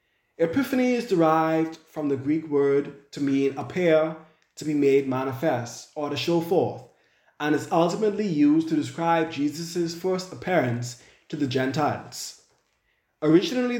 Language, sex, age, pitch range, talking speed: English, male, 20-39, 150-190 Hz, 135 wpm